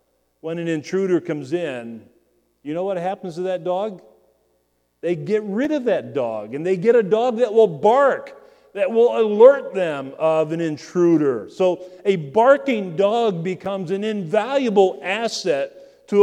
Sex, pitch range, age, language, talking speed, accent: male, 165-230 Hz, 40-59, English, 155 wpm, American